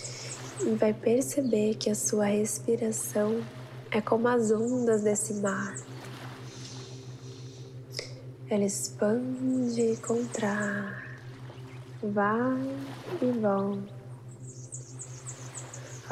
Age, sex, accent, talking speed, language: 20-39, female, Brazilian, 75 wpm, Portuguese